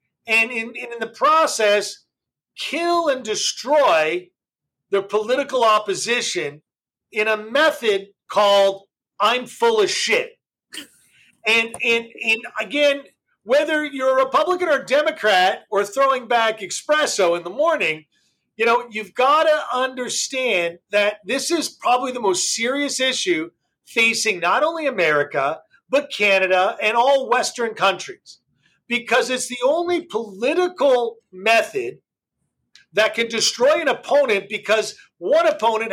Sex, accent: male, American